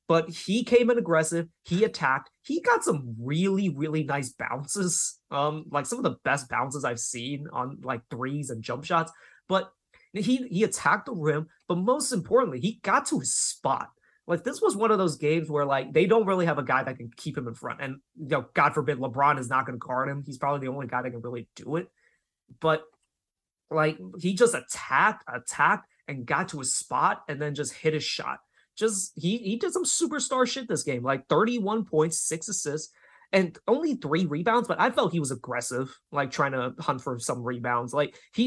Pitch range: 140-195 Hz